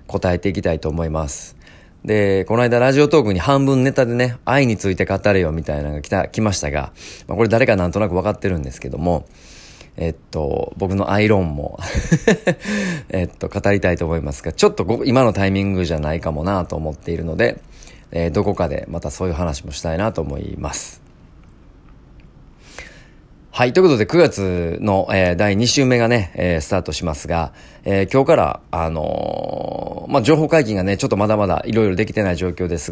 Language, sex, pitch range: Japanese, male, 85-110 Hz